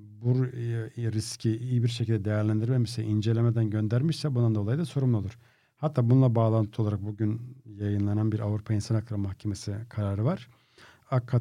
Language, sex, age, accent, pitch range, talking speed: Turkish, male, 50-69, native, 110-125 Hz, 140 wpm